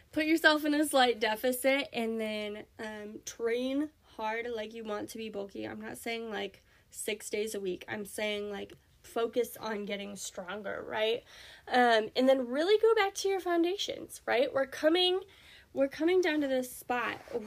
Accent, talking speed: American, 175 wpm